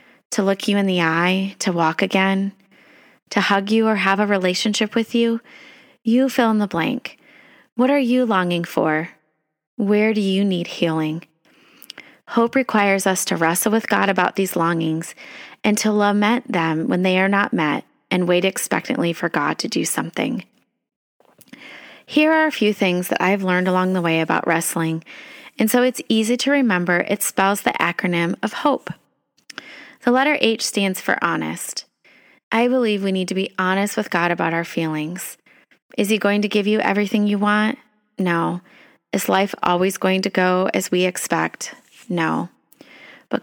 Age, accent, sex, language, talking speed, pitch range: 30-49, American, female, English, 170 wpm, 180-225 Hz